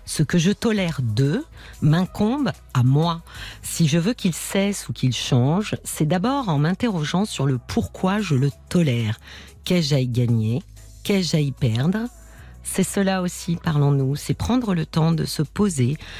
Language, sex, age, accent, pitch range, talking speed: French, female, 50-69, French, 135-190 Hz, 165 wpm